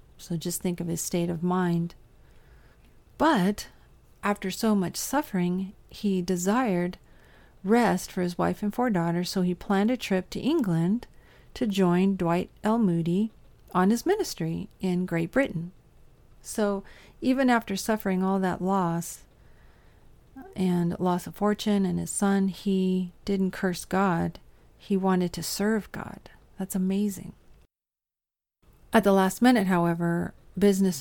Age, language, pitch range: 40-59, English, 170-195 Hz